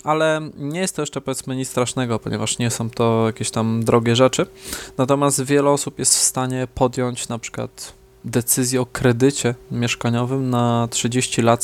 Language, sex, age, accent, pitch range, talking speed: Polish, male, 20-39, native, 120-130 Hz, 165 wpm